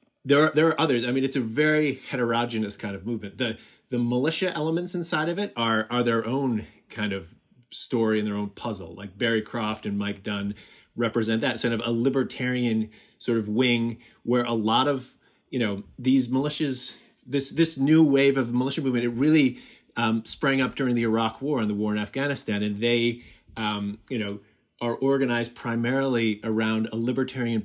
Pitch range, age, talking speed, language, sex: 110-130 Hz, 30-49, 190 wpm, English, male